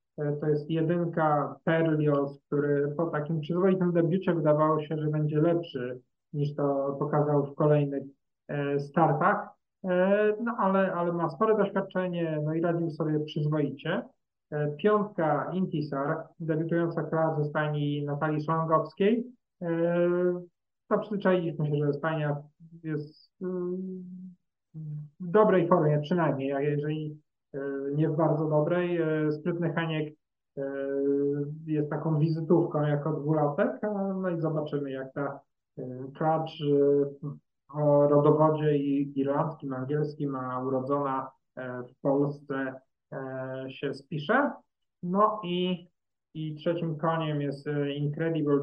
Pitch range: 145-170 Hz